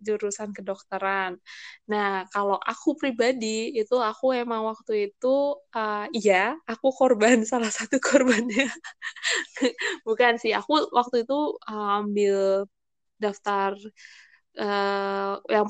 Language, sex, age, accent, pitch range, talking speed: Indonesian, female, 20-39, native, 200-240 Hz, 105 wpm